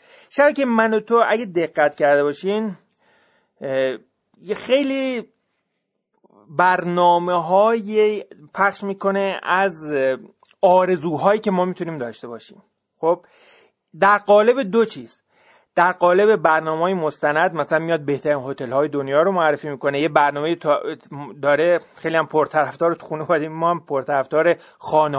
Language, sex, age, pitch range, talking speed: Persian, male, 30-49, 150-195 Hz, 110 wpm